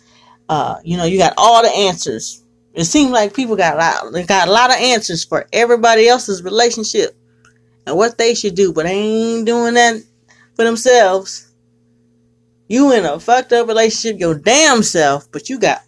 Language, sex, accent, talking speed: English, female, American, 180 wpm